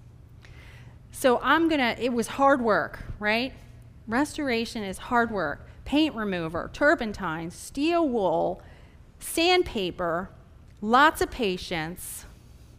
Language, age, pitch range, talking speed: English, 30-49, 185-255 Hz, 100 wpm